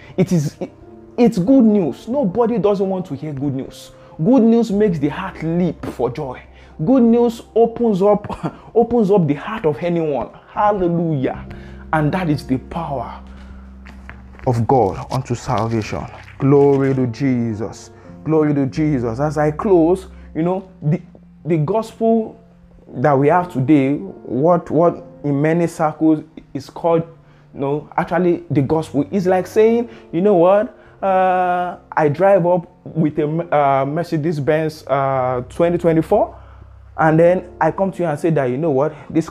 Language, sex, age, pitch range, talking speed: English, male, 20-39, 135-185 Hz, 150 wpm